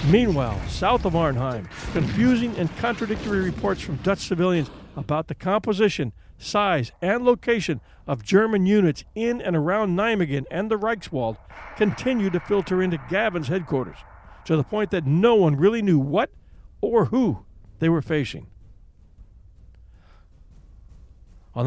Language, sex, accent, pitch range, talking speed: English, male, American, 135-210 Hz, 135 wpm